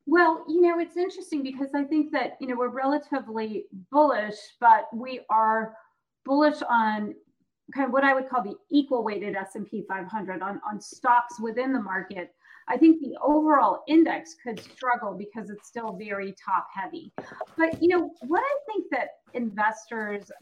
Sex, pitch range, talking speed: female, 205-275 Hz, 170 wpm